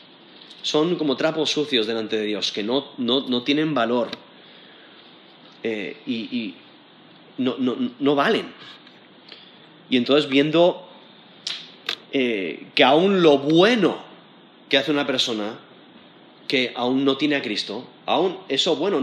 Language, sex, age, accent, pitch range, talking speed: Spanish, male, 30-49, Spanish, 140-215 Hz, 125 wpm